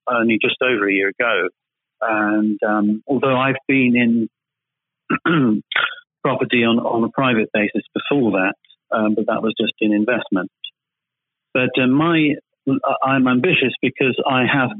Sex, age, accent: male, 40-59, British